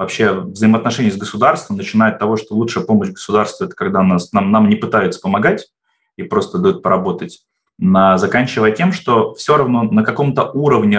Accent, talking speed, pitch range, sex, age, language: native, 165 wpm, 105-150 Hz, male, 20-39, Russian